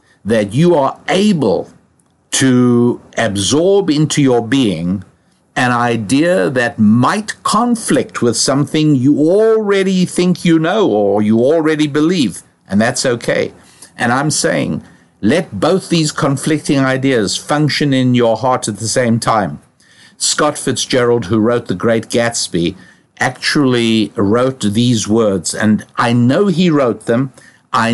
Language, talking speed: English, 135 wpm